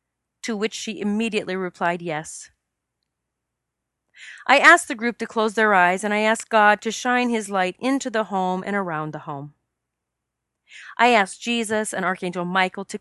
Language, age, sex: English, 40-59, female